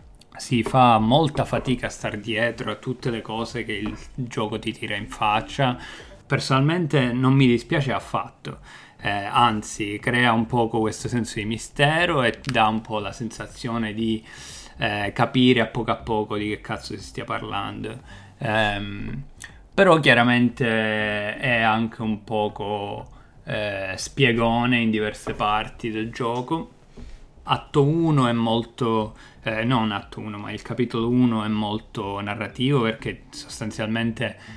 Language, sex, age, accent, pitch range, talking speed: Italian, male, 20-39, native, 105-120 Hz, 140 wpm